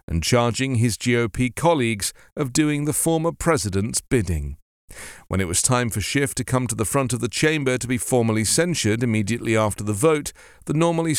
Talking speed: 190 wpm